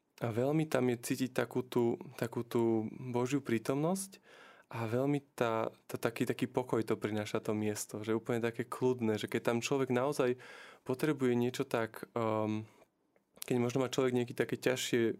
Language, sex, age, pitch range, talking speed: Slovak, male, 20-39, 115-135 Hz, 165 wpm